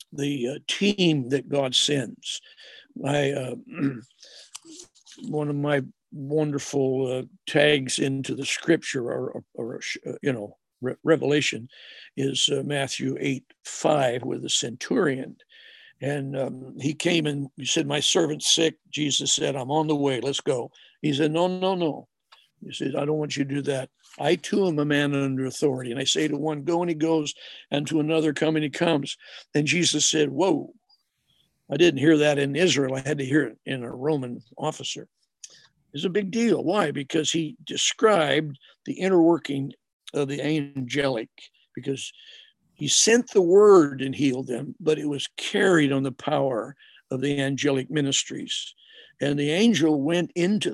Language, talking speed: English, 170 wpm